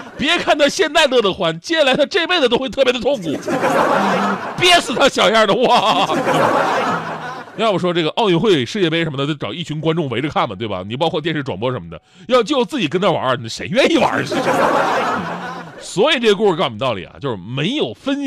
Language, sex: Chinese, male